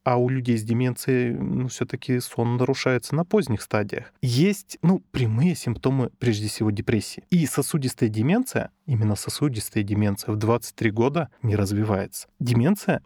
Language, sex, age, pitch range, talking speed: Russian, male, 20-39, 110-140 Hz, 145 wpm